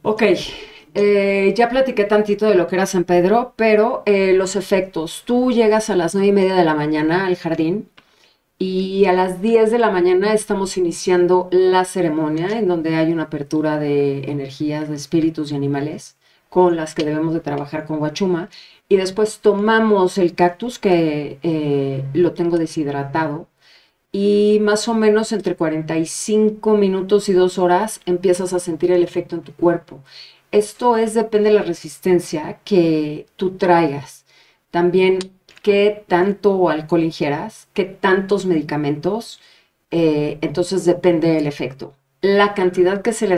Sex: female